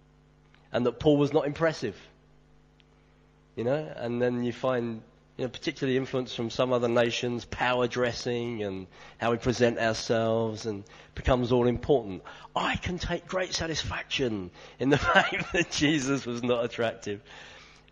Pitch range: 110-160 Hz